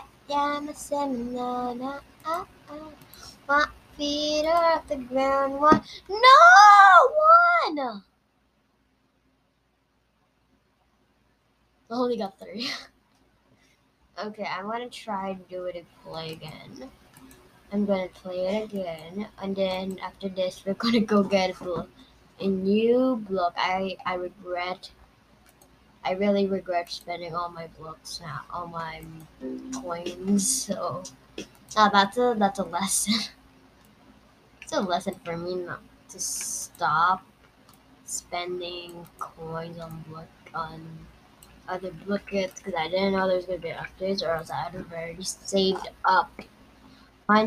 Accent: American